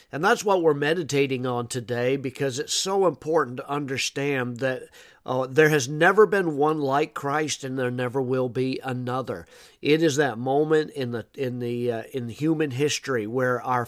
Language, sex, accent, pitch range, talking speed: English, male, American, 125-150 Hz, 180 wpm